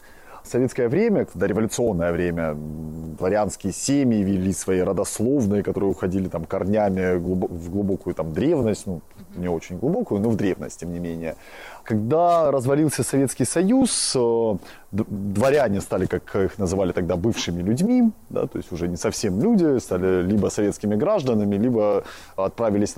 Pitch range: 95-120 Hz